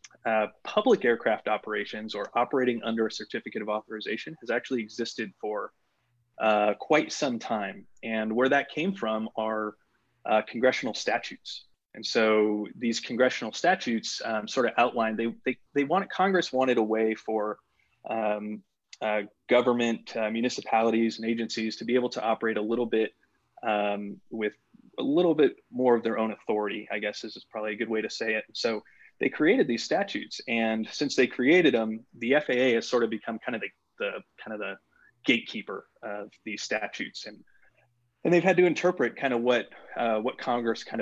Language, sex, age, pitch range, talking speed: English, male, 30-49, 110-125 Hz, 180 wpm